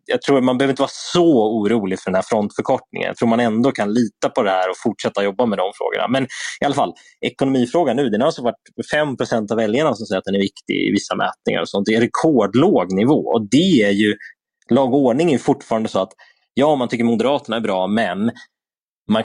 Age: 20-39